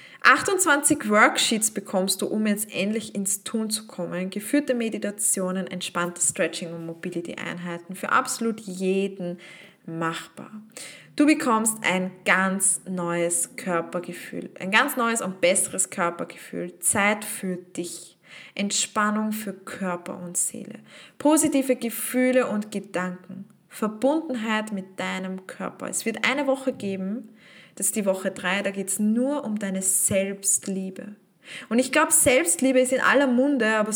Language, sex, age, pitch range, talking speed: German, female, 20-39, 190-235 Hz, 135 wpm